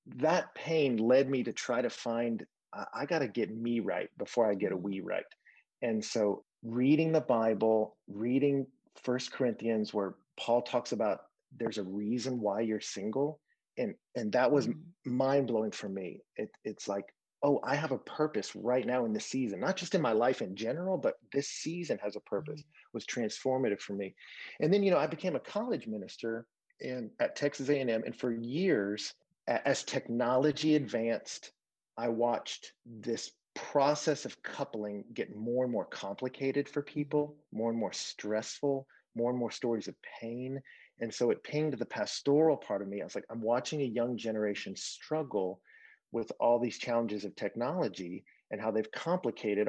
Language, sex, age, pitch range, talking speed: English, male, 30-49, 110-140 Hz, 175 wpm